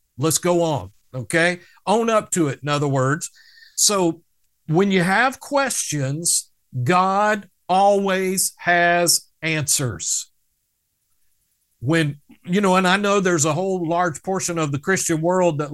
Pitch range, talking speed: 155-200 Hz, 135 wpm